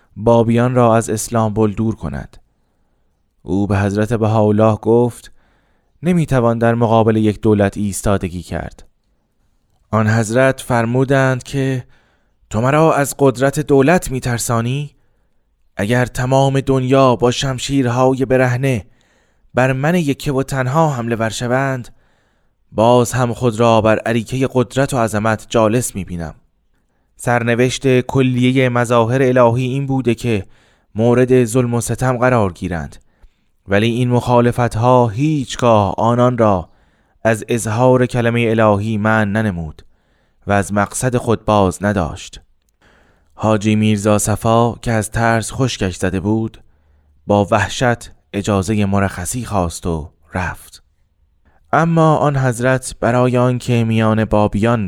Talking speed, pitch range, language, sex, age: 120 wpm, 100-125 Hz, Persian, male, 20-39